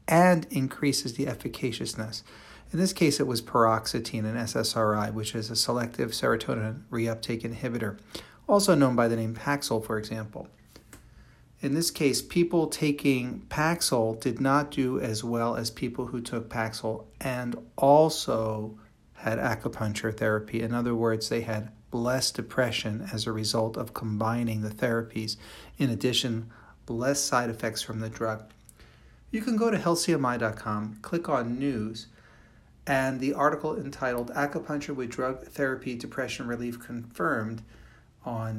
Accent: American